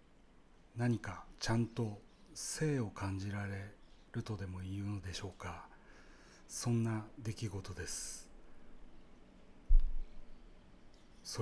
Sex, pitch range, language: male, 95-115 Hz, Japanese